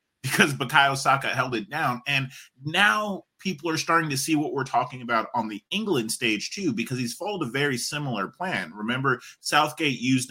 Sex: male